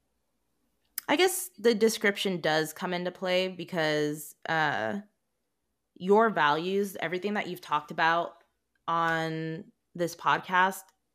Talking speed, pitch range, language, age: 110 wpm, 155-190 Hz, English, 20-39